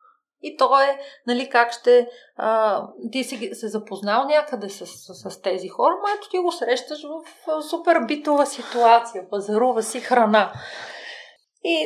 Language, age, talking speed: Bulgarian, 30-49, 160 wpm